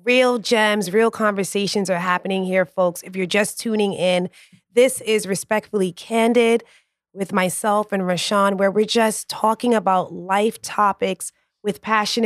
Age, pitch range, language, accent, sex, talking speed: 30-49, 175-210 Hz, English, American, female, 145 wpm